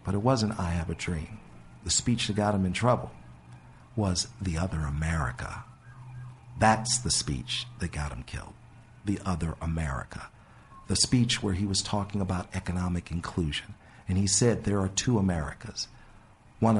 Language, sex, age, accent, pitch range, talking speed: English, male, 50-69, American, 85-110 Hz, 160 wpm